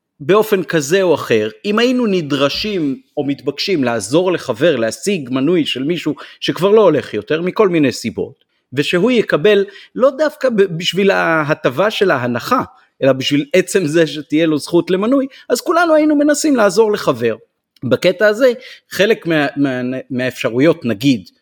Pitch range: 130-205 Hz